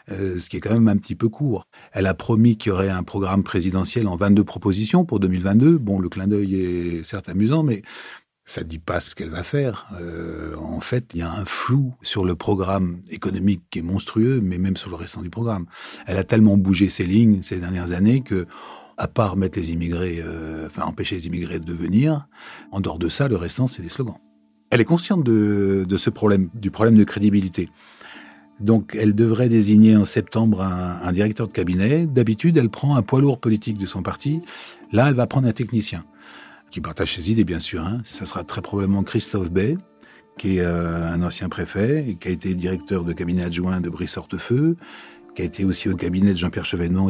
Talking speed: 215 wpm